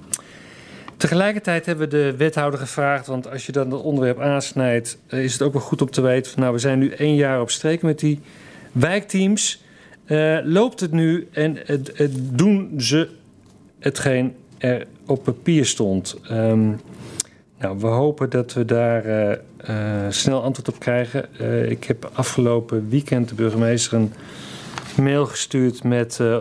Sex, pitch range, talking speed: male, 115-140 Hz, 160 wpm